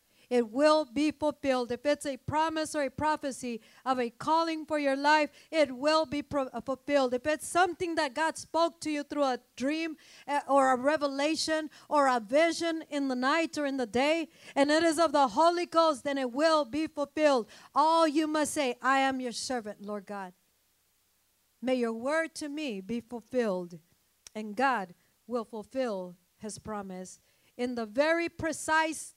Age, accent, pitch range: 50-69, American, 230-305 Hz